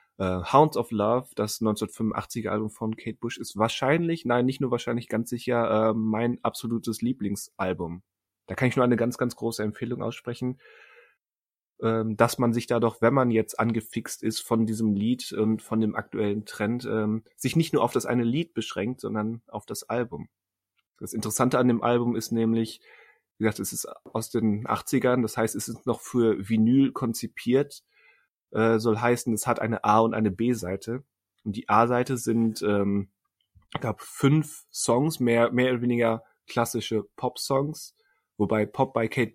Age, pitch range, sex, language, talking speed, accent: 30-49, 105-120 Hz, male, German, 170 wpm, German